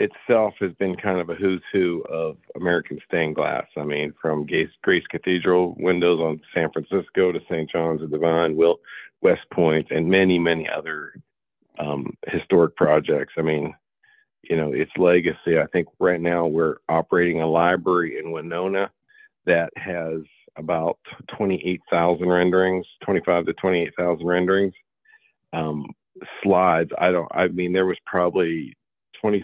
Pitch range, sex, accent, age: 80-95 Hz, male, American, 50-69